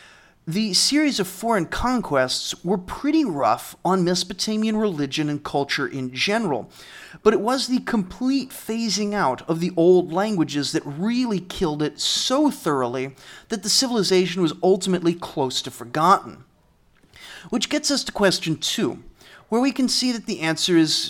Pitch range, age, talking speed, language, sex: 155-210 Hz, 30-49, 155 wpm, English, male